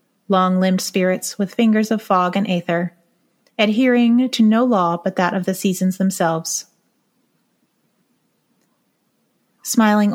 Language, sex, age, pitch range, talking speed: English, female, 30-49, 180-220 Hz, 110 wpm